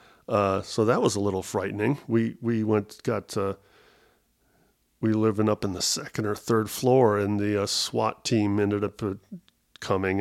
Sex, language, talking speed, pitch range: male, English, 170 wpm, 105-120 Hz